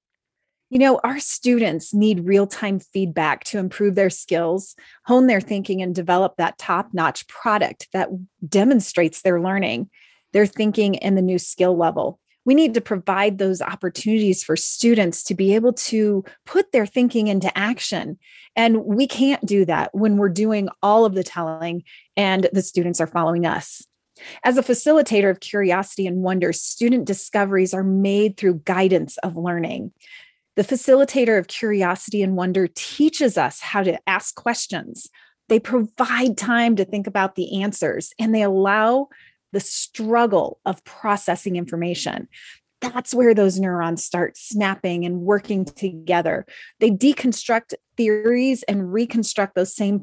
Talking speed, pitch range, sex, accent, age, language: 150 wpm, 185-230 Hz, female, American, 30-49, English